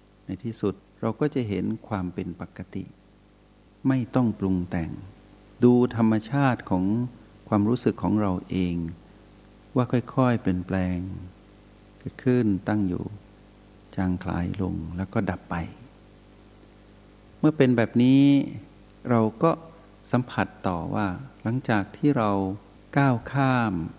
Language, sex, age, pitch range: Thai, male, 60-79, 95-115 Hz